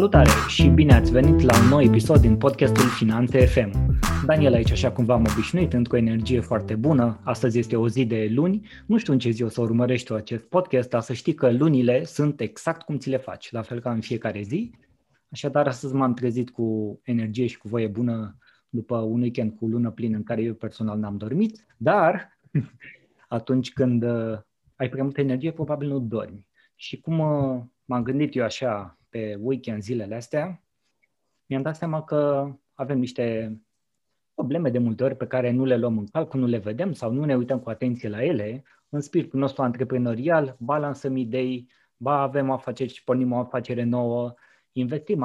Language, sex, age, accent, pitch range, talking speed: Romanian, male, 20-39, native, 115-140 Hz, 185 wpm